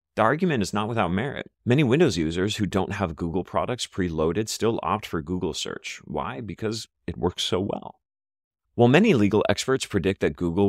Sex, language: male, English